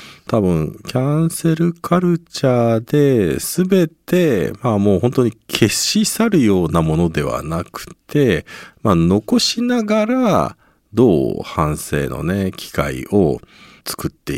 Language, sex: Japanese, male